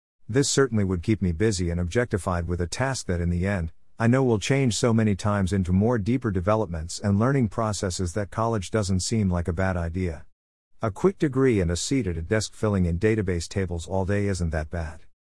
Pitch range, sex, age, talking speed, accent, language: 90-115 Hz, male, 50-69, 215 wpm, American, English